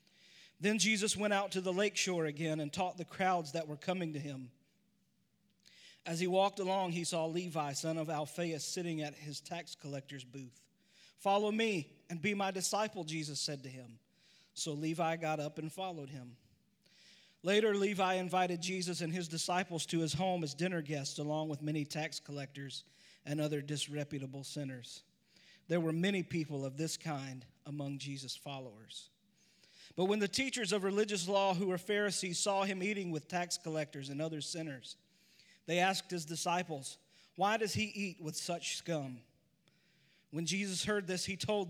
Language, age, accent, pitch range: English, 40-59, American, 150-190 Hz